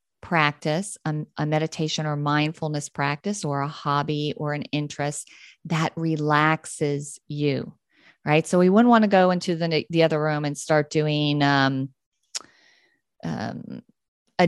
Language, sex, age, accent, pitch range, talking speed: English, female, 40-59, American, 145-165 Hz, 140 wpm